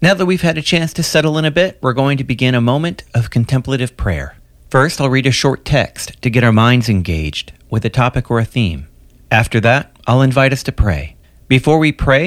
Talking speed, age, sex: 230 wpm, 40-59, male